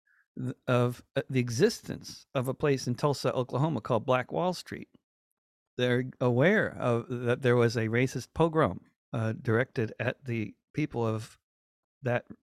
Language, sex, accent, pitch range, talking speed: English, male, American, 110-130 Hz, 140 wpm